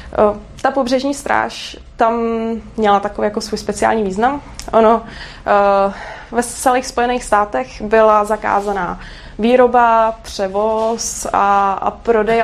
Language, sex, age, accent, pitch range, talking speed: Czech, female, 20-39, native, 215-260 Hz, 105 wpm